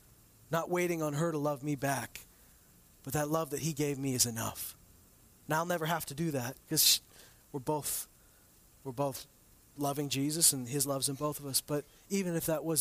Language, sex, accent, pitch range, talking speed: English, male, American, 125-165 Hz, 200 wpm